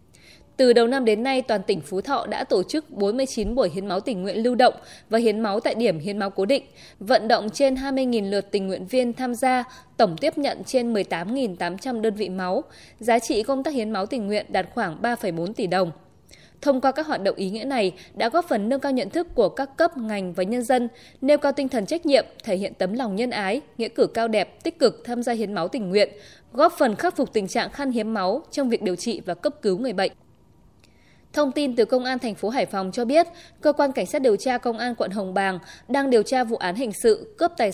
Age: 20-39